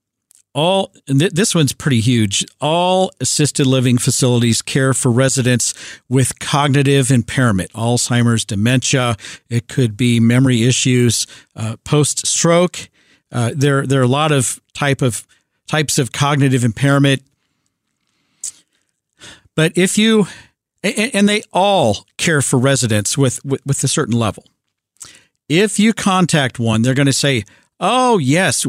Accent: American